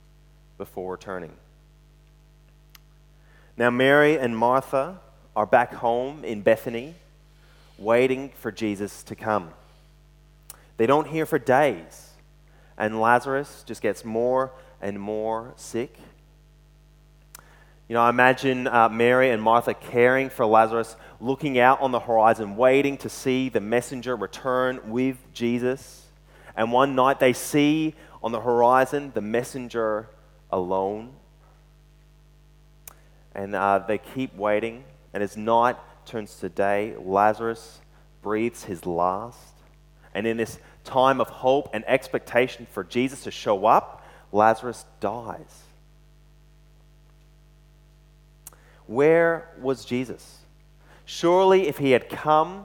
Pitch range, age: 115-150 Hz, 20-39